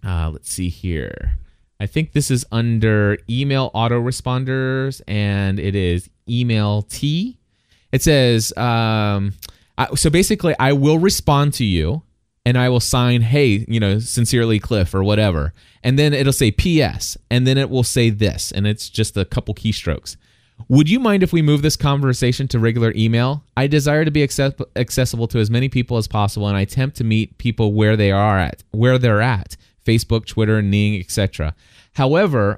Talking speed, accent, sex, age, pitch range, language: 175 wpm, American, male, 30-49, 105-135 Hz, English